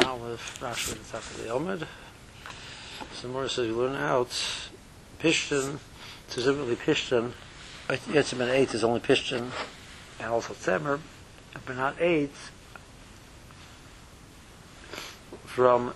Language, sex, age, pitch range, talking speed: English, male, 60-79, 115-135 Hz, 100 wpm